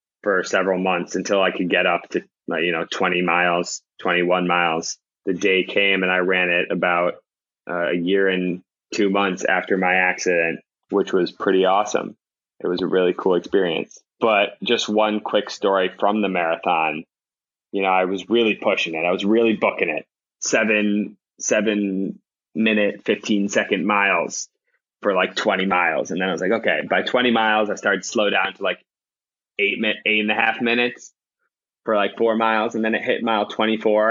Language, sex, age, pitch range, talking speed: English, male, 20-39, 95-110 Hz, 185 wpm